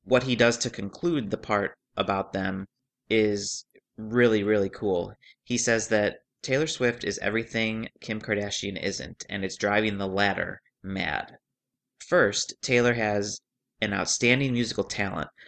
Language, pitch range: English, 100-115 Hz